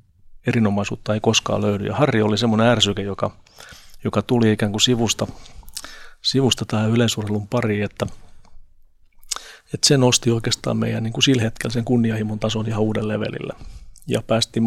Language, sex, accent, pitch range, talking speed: Finnish, male, native, 105-115 Hz, 145 wpm